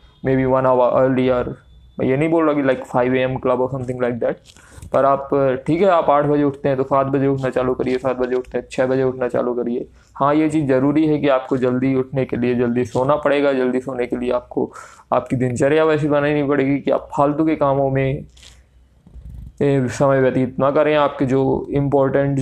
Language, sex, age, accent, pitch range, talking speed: Hindi, male, 20-39, native, 130-140 Hz, 210 wpm